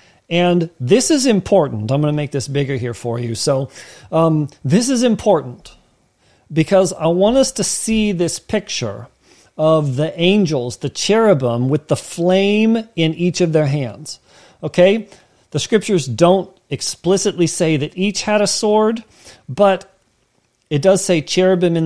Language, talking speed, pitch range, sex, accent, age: English, 155 wpm, 140-185 Hz, male, American, 40-59